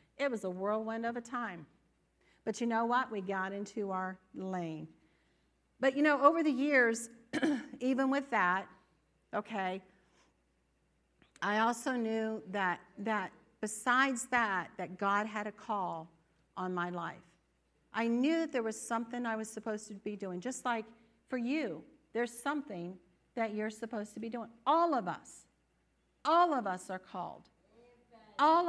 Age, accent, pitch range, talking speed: 50-69, American, 185-255 Hz, 155 wpm